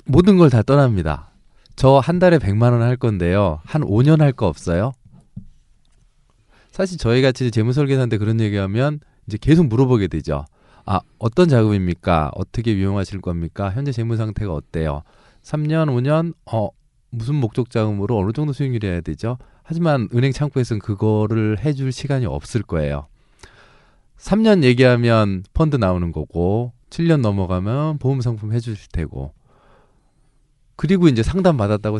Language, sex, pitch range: Korean, male, 100-140 Hz